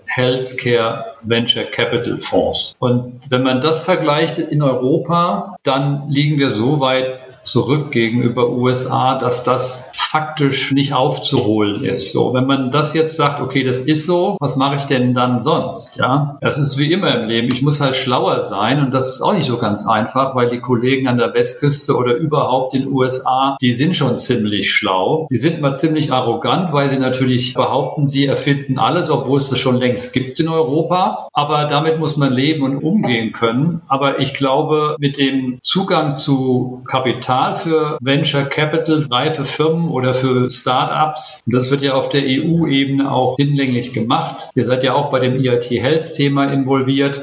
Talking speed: 175 wpm